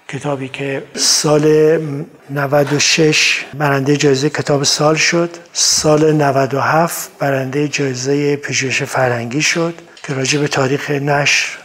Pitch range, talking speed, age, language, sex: 140-175 Hz, 110 wpm, 50-69, Persian, male